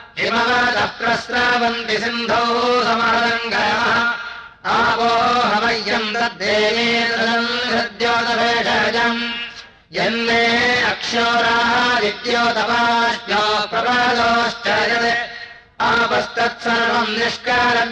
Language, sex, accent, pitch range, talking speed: Hindi, male, native, 230-235 Hz, 35 wpm